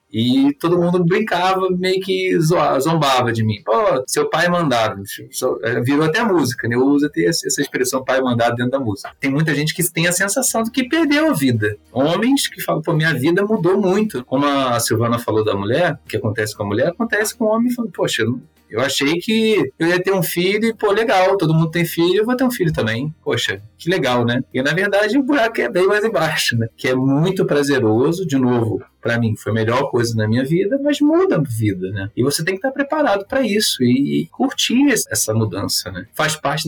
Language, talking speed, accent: Portuguese, 225 wpm, Brazilian